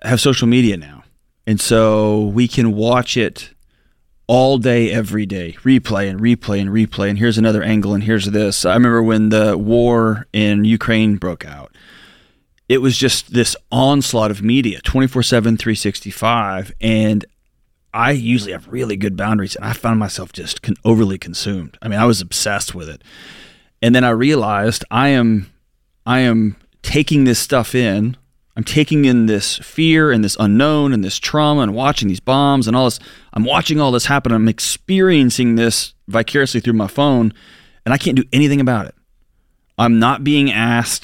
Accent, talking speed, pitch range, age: American, 175 wpm, 105-130 Hz, 30-49